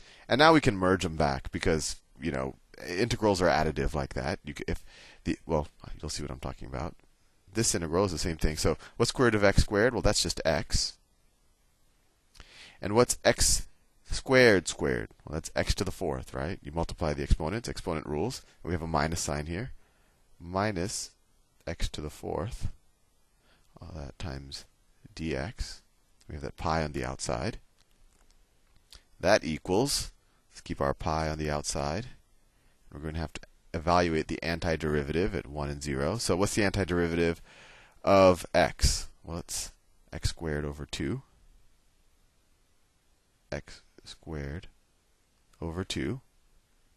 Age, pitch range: 30-49, 75-95 Hz